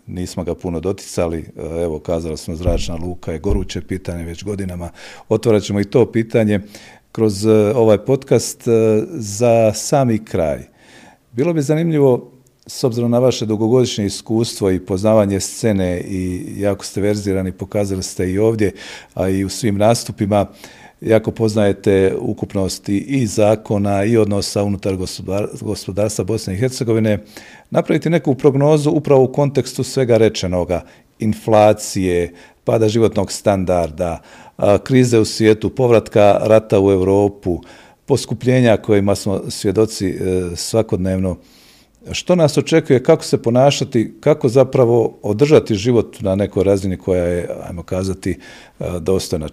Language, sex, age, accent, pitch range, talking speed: Croatian, male, 50-69, native, 95-115 Hz, 125 wpm